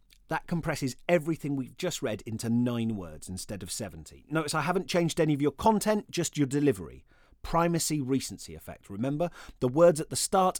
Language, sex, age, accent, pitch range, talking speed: English, male, 30-49, British, 120-160 Hz, 180 wpm